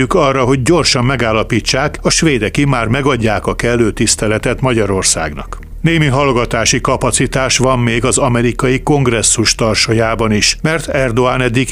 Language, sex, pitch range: Hungarian, male, 115-140 Hz